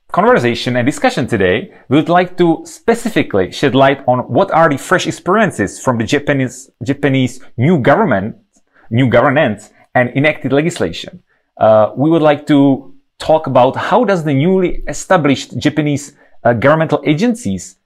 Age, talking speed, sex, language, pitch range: 30-49, 150 wpm, male, English, 120-170 Hz